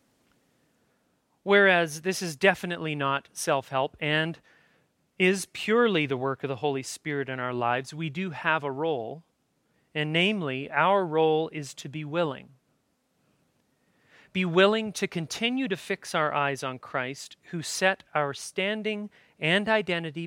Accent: American